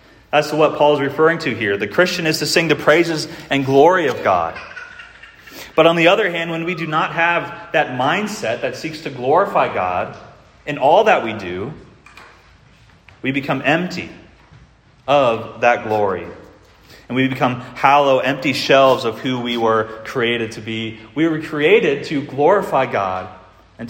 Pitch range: 110-145 Hz